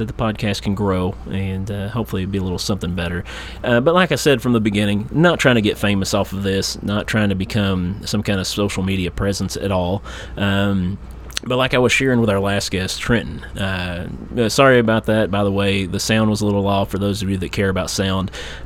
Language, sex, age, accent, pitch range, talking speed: English, male, 30-49, American, 95-110 Hz, 235 wpm